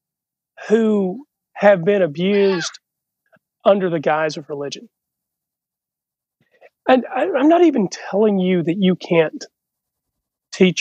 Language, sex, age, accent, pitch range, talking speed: English, male, 40-59, American, 160-215 Hz, 105 wpm